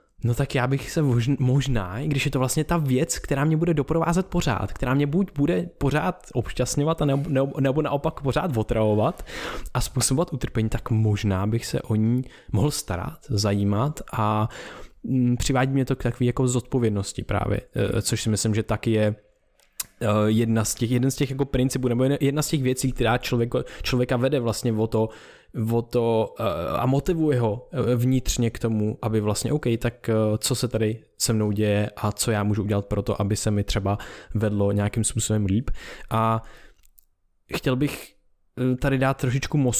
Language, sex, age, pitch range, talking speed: Czech, male, 20-39, 110-135 Hz, 175 wpm